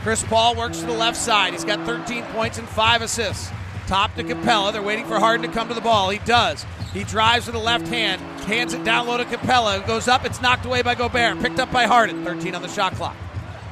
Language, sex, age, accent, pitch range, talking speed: English, male, 40-59, American, 175-245 Hz, 250 wpm